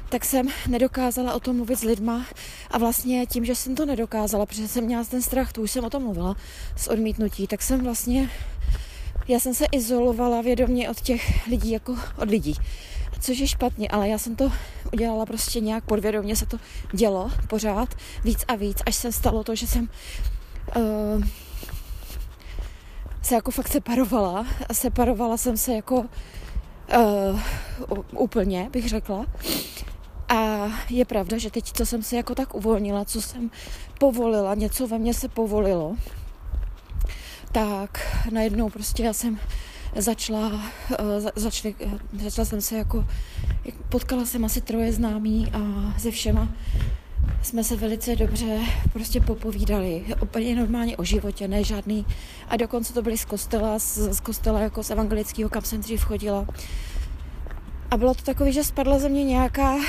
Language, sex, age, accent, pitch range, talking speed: Czech, female, 20-39, native, 210-245 Hz, 155 wpm